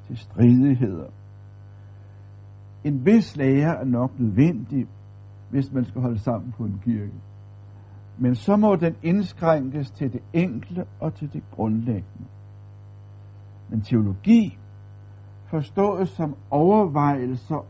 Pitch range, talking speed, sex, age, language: 100-155 Hz, 110 wpm, male, 60-79, Danish